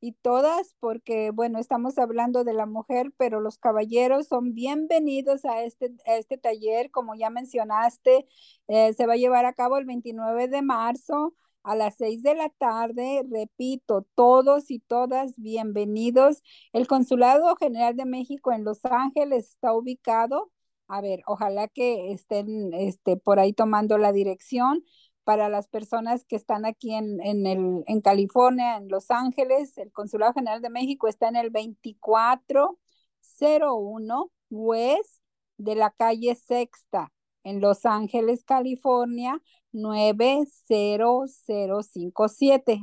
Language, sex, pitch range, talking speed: Spanish, female, 215-260 Hz, 135 wpm